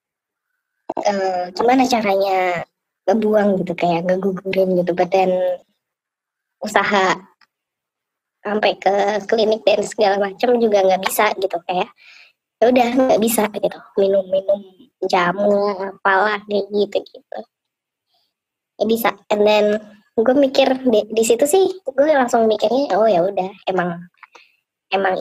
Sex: male